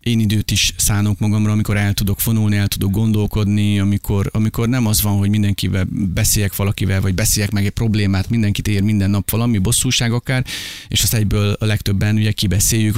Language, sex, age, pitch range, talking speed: Hungarian, male, 30-49, 100-120 Hz, 185 wpm